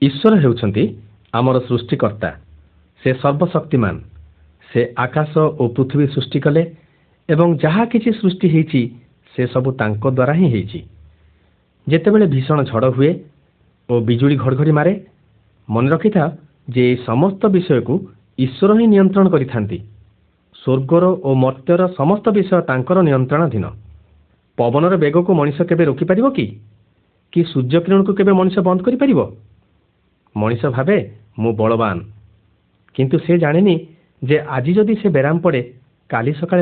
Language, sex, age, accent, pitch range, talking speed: Hindi, male, 50-69, native, 105-170 Hz, 110 wpm